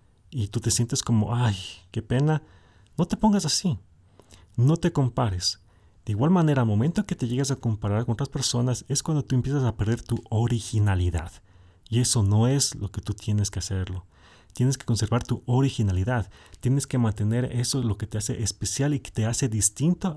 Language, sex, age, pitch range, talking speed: Spanish, male, 40-59, 100-125 Hz, 195 wpm